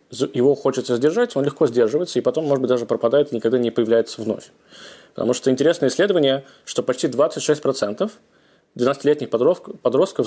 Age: 20-39